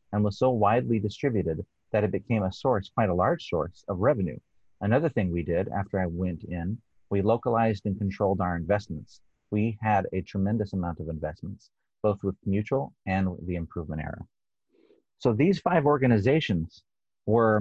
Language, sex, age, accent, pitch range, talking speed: English, male, 30-49, American, 90-110 Hz, 170 wpm